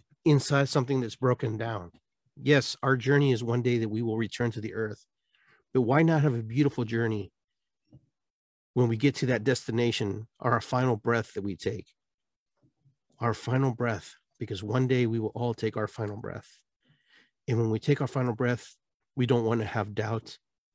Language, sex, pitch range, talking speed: English, male, 110-140 Hz, 180 wpm